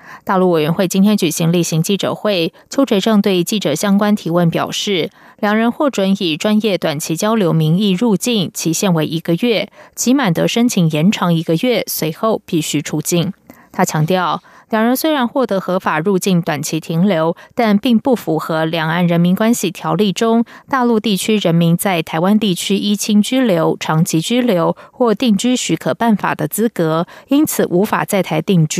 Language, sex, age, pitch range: German, female, 20-39, 165-220 Hz